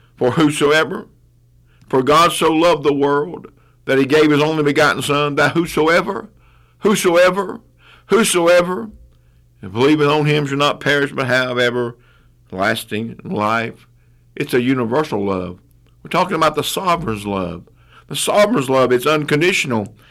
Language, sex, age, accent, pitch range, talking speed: English, male, 50-69, American, 110-145 Hz, 135 wpm